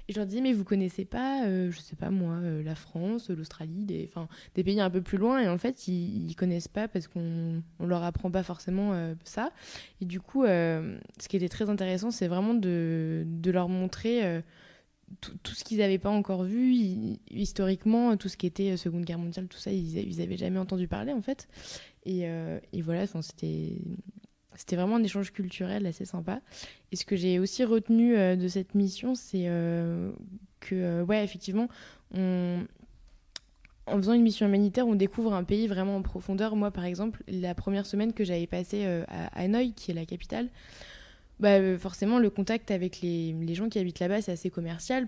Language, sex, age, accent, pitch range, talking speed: French, female, 20-39, French, 175-210 Hz, 200 wpm